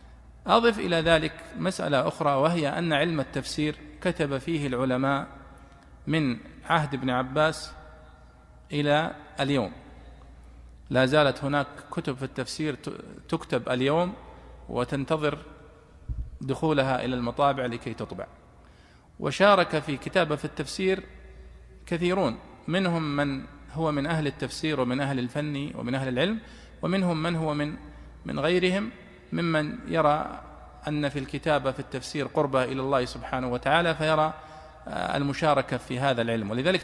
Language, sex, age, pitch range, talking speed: Arabic, male, 40-59, 125-160 Hz, 120 wpm